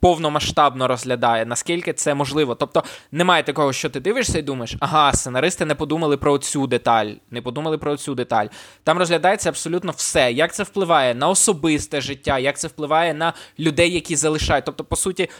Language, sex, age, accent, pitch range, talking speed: Ukrainian, male, 20-39, native, 135-165 Hz, 175 wpm